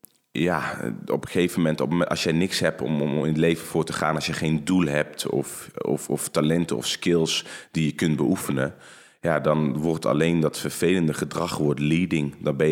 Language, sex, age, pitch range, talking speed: Dutch, male, 30-49, 75-85 Hz, 195 wpm